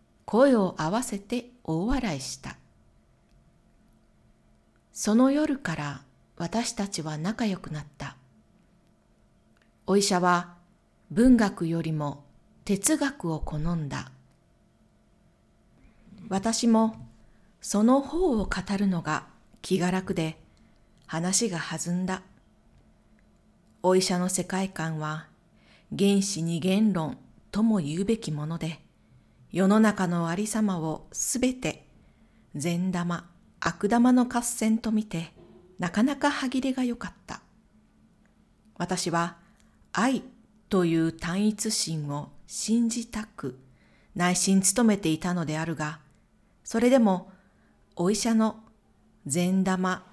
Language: Japanese